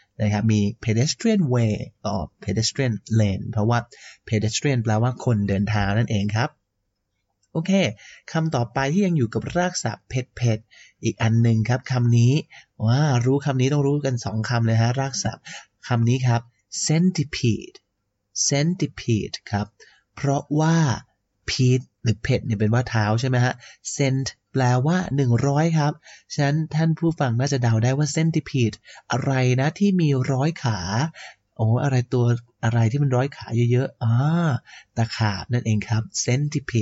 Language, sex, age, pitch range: Thai, male, 30-49, 115-150 Hz